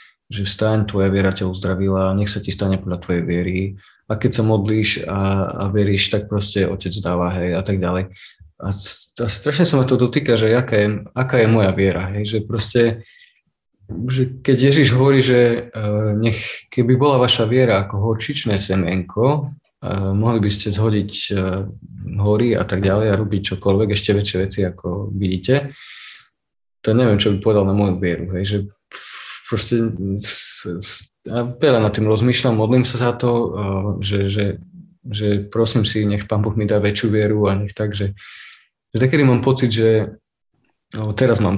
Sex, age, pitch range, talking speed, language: male, 20-39, 100-115 Hz, 175 wpm, Slovak